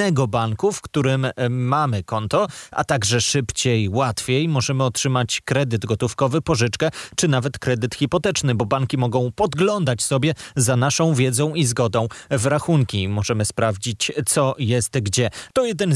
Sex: male